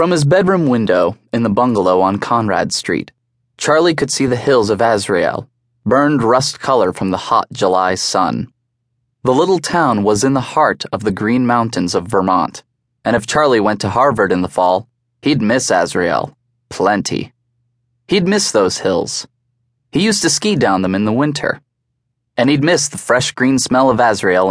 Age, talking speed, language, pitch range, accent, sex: 20-39, 180 wpm, English, 120-140 Hz, American, male